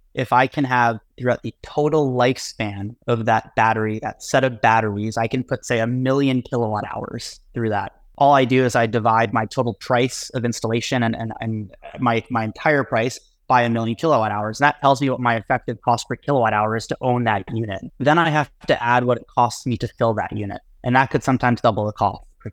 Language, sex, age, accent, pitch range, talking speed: English, male, 20-39, American, 110-125 Hz, 225 wpm